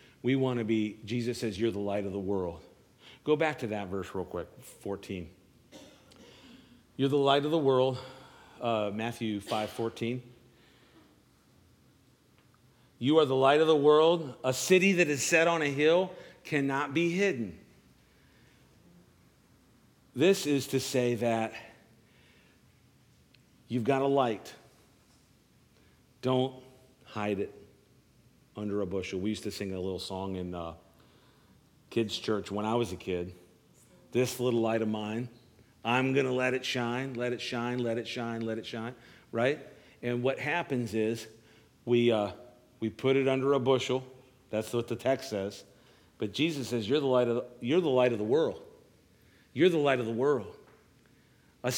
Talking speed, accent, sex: 160 wpm, American, male